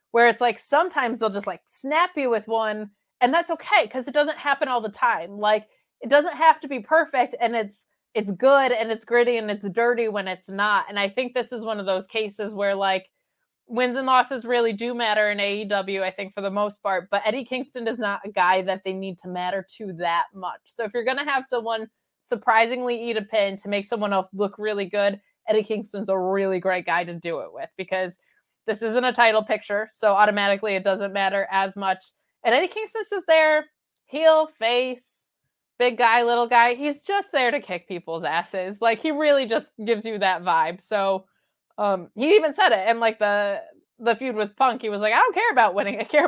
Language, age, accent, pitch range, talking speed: English, 20-39, American, 200-255 Hz, 225 wpm